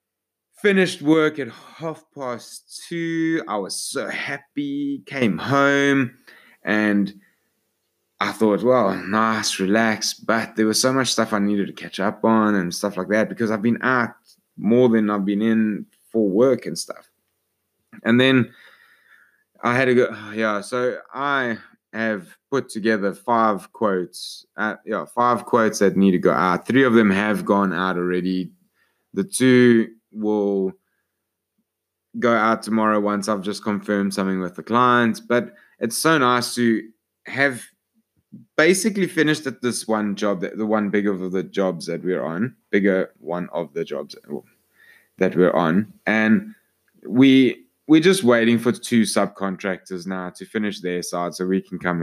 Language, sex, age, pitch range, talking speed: English, male, 20-39, 100-125 Hz, 160 wpm